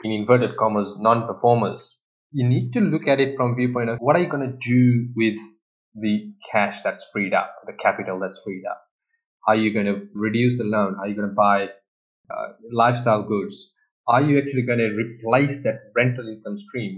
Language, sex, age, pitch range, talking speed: English, male, 20-39, 110-130 Hz, 200 wpm